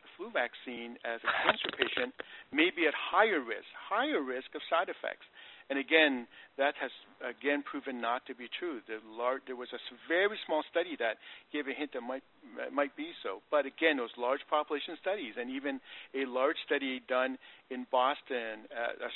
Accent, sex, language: American, male, English